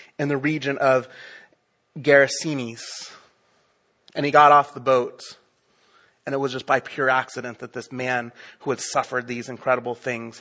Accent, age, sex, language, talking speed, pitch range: American, 30-49, male, English, 155 wpm, 125-165 Hz